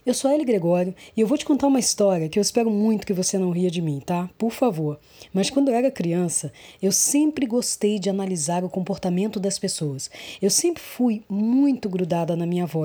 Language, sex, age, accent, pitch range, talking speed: Portuguese, female, 20-39, Brazilian, 180-230 Hz, 220 wpm